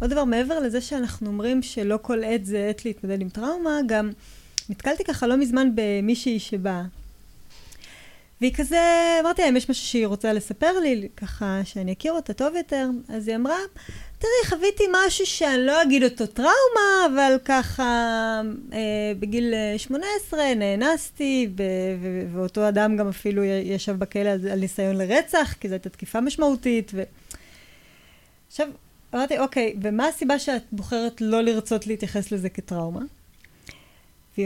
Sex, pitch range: female, 210-290 Hz